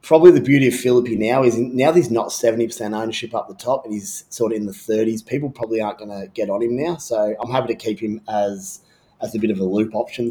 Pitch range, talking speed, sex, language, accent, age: 105-125 Hz, 270 wpm, male, English, Australian, 30-49